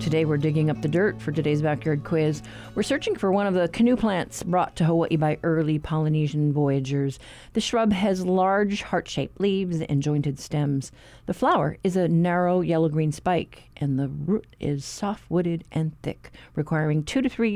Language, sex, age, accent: English, female, 50-69, American